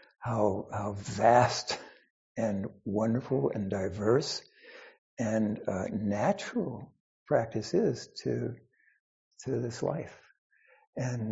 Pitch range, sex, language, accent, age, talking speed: 110-145 Hz, male, English, American, 60-79, 90 wpm